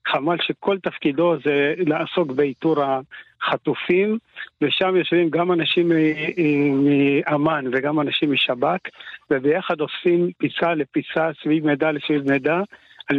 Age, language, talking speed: 60-79, Hebrew, 110 wpm